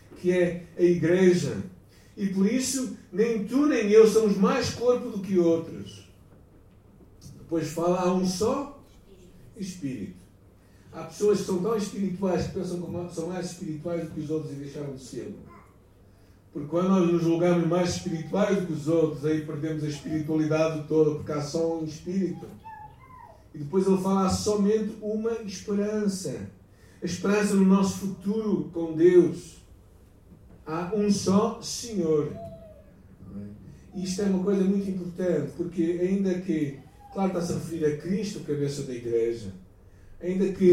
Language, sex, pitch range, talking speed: Portuguese, male, 150-190 Hz, 150 wpm